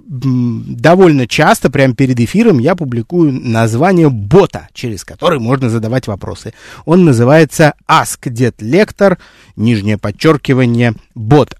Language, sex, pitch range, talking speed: Russian, male, 120-165 Hz, 110 wpm